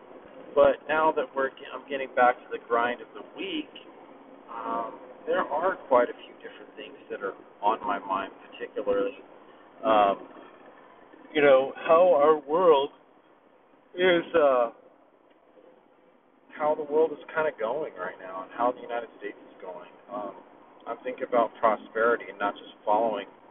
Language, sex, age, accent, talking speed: English, male, 40-59, American, 150 wpm